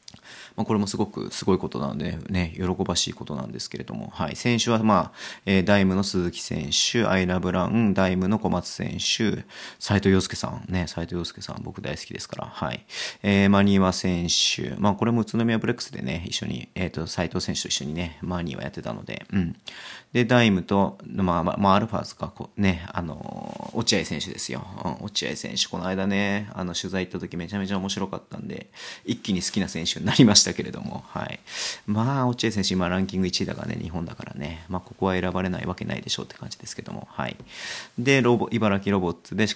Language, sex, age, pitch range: Japanese, male, 30-49, 90-110 Hz